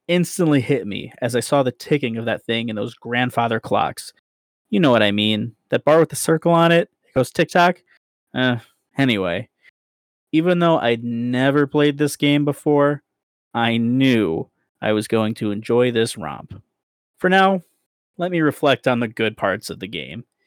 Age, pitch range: 20-39, 115-150 Hz